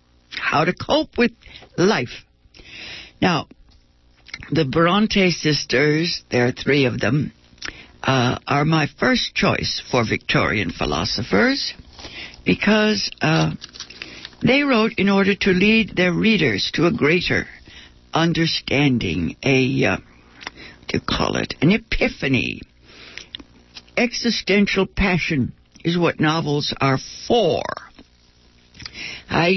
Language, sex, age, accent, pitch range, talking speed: English, female, 60-79, American, 120-200 Hz, 105 wpm